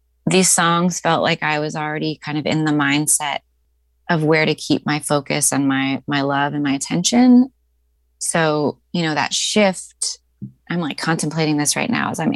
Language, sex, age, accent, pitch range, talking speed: English, female, 20-39, American, 150-185 Hz, 185 wpm